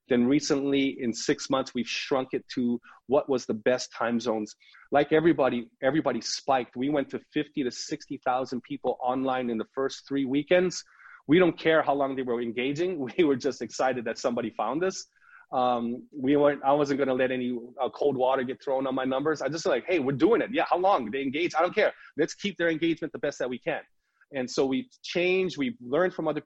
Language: English